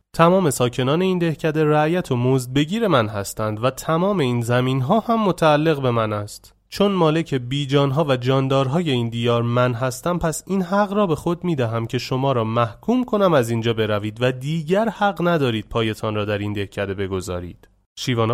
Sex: male